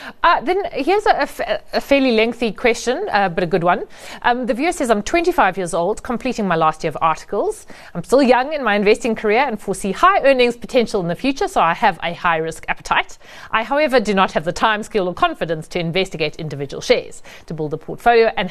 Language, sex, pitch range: English, female, 170-245 Hz